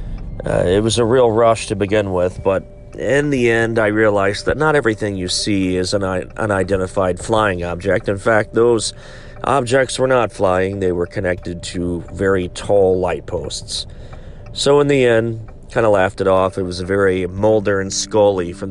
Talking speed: 185 wpm